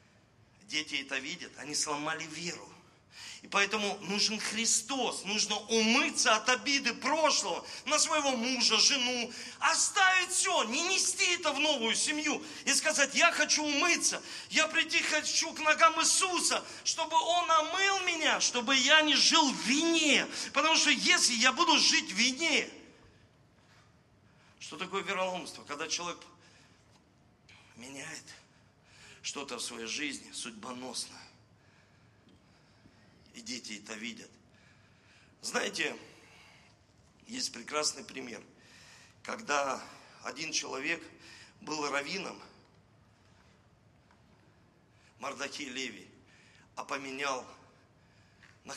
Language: Russian